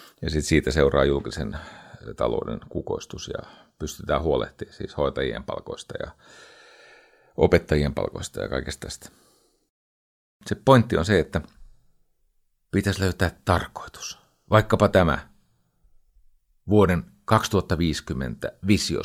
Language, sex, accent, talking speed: Finnish, male, native, 100 wpm